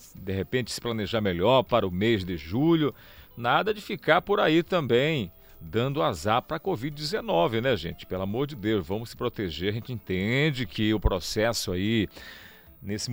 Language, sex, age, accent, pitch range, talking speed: Portuguese, male, 40-59, Brazilian, 100-130 Hz, 175 wpm